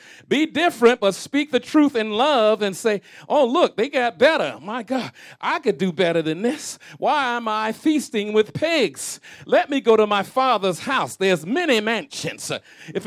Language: English